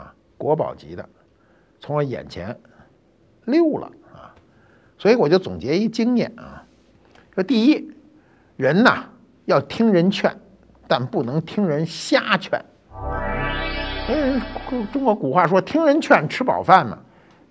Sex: male